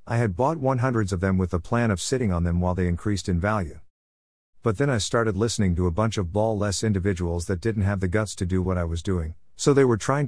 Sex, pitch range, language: male, 90-115 Hz, English